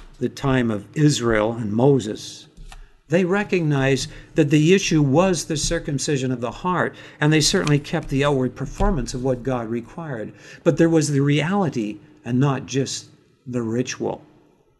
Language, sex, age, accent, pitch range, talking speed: English, male, 50-69, American, 130-155 Hz, 155 wpm